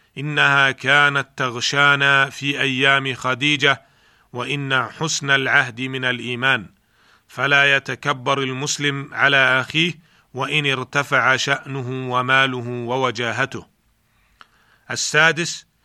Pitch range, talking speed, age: 130-145 Hz, 85 wpm, 40-59